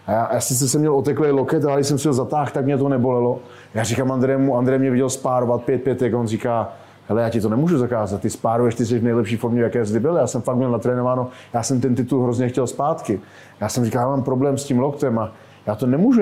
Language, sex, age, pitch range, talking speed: Slovak, male, 30-49, 115-135 Hz, 265 wpm